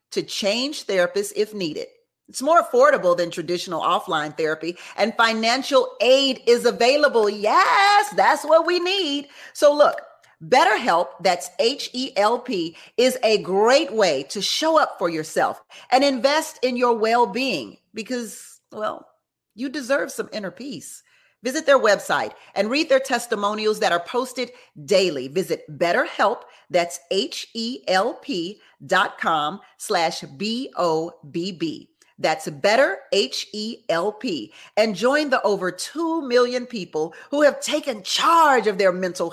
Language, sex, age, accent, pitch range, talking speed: English, female, 40-59, American, 195-290 Hz, 150 wpm